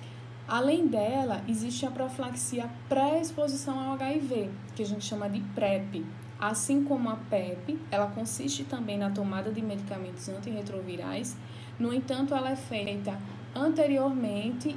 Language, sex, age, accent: Portuguese, female, 10-29, Brazilian